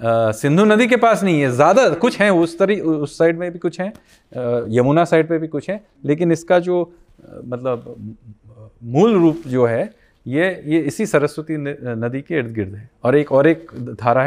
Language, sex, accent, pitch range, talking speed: Hindi, male, native, 120-170 Hz, 185 wpm